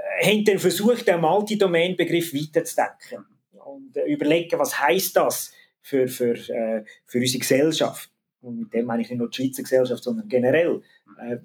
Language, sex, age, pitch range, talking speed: German, male, 30-49, 125-175 Hz, 155 wpm